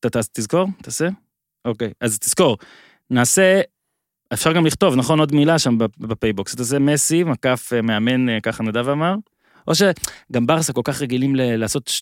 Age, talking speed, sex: 20-39, 160 wpm, male